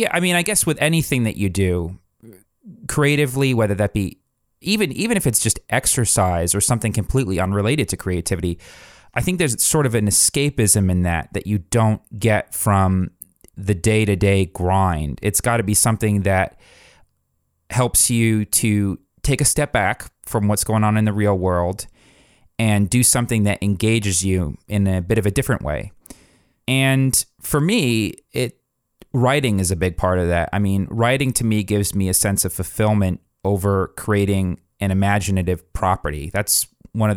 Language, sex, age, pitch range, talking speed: English, male, 30-49, 95-115 Hz, 175 wpm